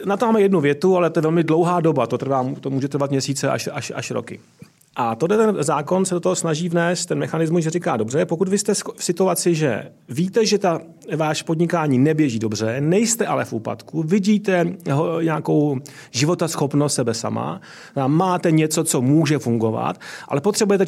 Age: 30-49